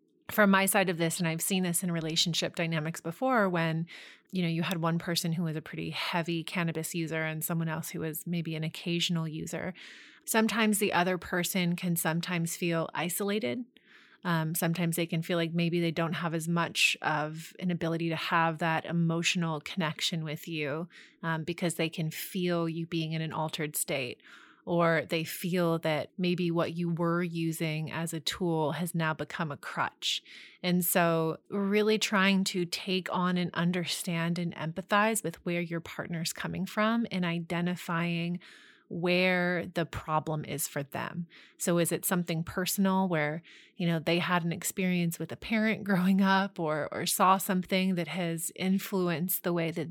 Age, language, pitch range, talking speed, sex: 30-49, English, 165-185 Hz, 175 wpm, female